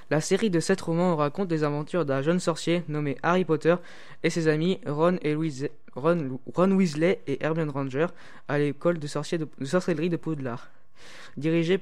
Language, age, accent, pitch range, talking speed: French, 20-39, French, 145-170 Hz, 165 wpm